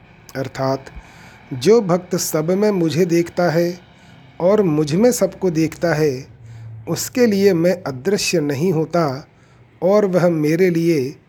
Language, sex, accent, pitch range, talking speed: Hindi, male, native, 140-185 Hz, 130 wpm